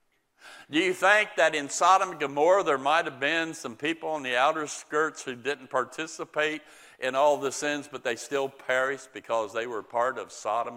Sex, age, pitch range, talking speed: male, 60-79, 135-190 Hz, 195 wpm